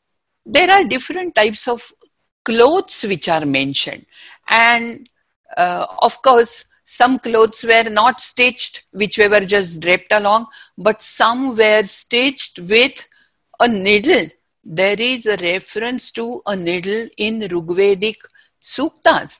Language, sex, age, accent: English, female, 60-79, Indian